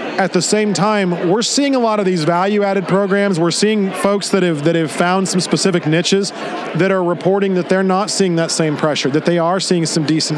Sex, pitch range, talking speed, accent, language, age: male, 170-195 Hz, 225 wpm, American, English, 40-59